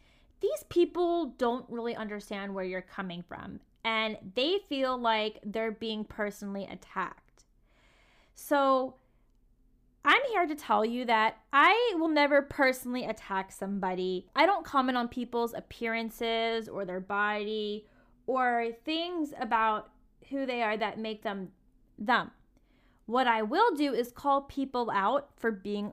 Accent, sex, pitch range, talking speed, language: American, female, 210-280 Hz, 135 wpm, English